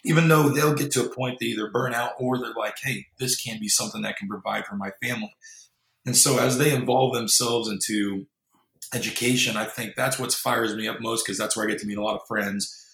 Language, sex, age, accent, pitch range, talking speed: English, male, 30-49, American, 105-125 Hz, 245 wpm